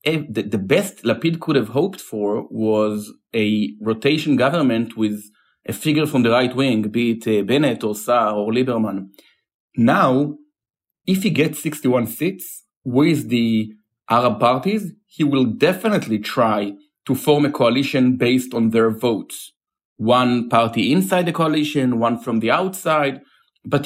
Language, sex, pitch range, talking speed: English, male, 115-150 Hz, 145 wpm